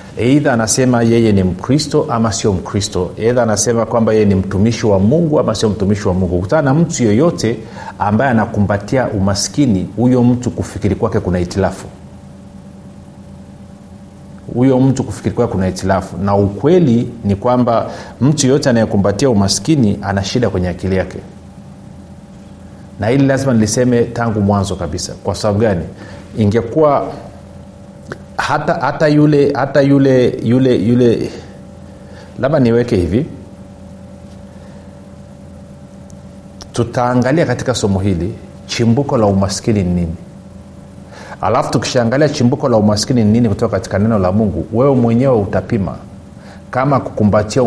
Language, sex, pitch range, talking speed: Swahili, male, 95-120 Hz, 120 wpm